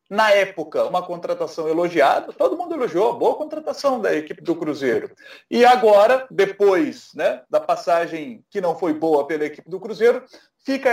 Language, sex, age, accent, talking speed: Portuguese, male, 40-59, Brazilian, 160 wpm